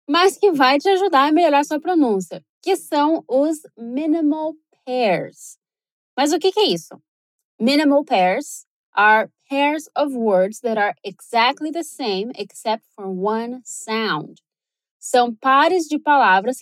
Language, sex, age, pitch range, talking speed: Portuguese, female, 20-39, 235-325 Hz, 135 wpm